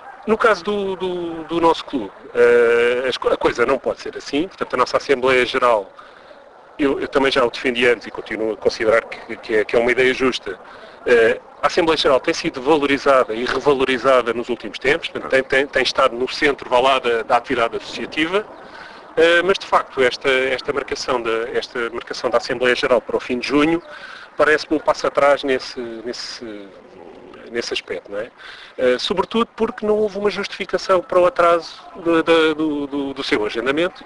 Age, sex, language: 40-59, male, Portuguese